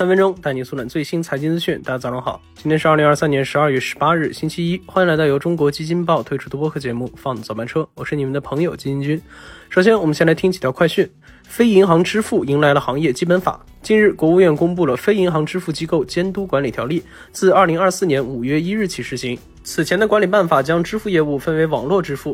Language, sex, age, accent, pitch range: Chinese, male, 20-39, native, 140-185 Hz